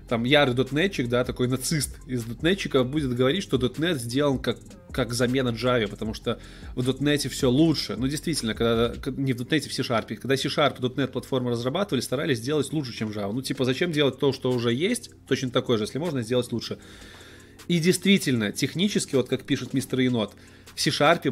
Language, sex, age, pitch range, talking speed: Russian, male, 20-39, 115-150 Hz, 185 wpm